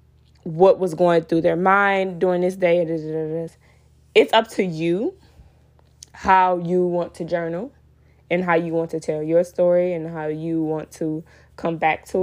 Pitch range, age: 160-185 Hz, 10-29